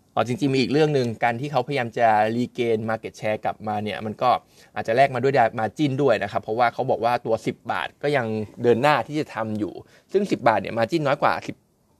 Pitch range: 110-140 Hz